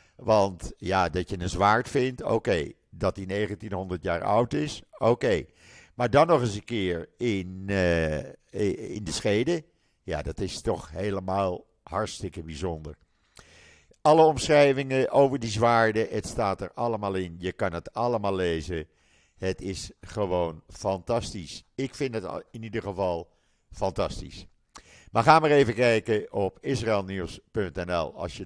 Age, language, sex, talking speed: 50-69, Dutch, male, 150 wpm